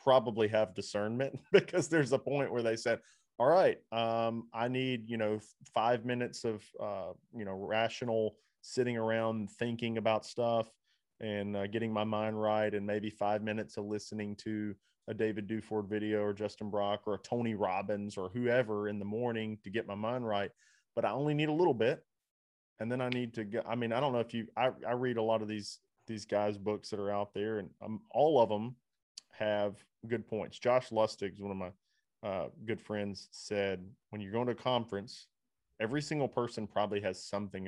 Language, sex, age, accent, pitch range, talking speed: English, male, 20-39, American, 105-125 Hz, 200 wpm